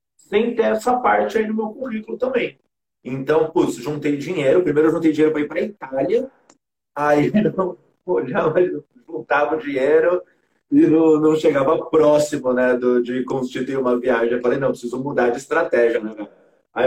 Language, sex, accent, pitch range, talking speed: Portuguese, male, Brazilian, 130-190 Hz, 160 wpm